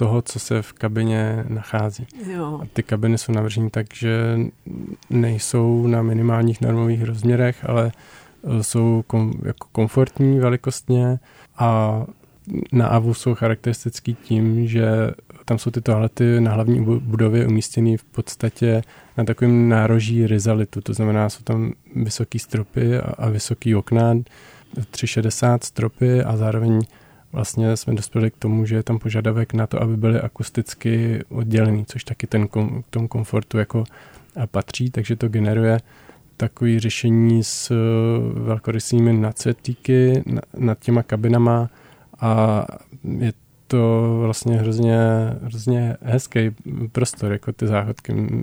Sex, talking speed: male, 130 wpm